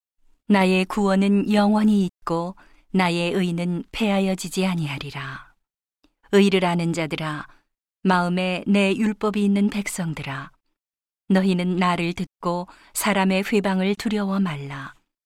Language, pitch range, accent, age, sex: Korean, 170-200 Hz, native, 40-59, female